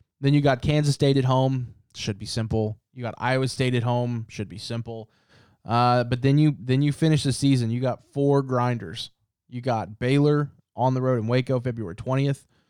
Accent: American